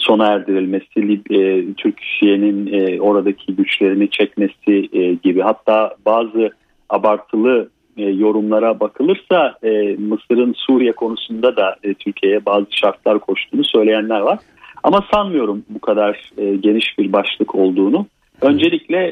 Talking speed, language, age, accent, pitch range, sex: 95 wpm, Turkish, 40-59, native, 105-125 Hz, male